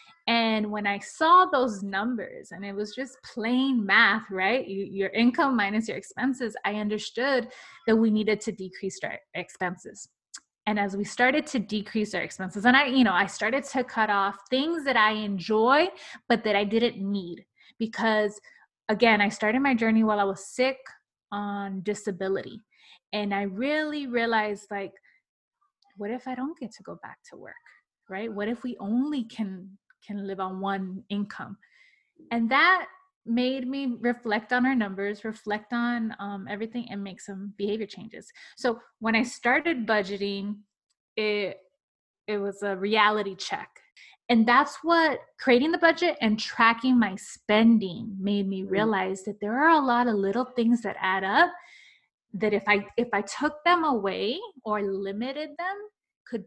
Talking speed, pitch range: 165 wpm, 200-255 Hz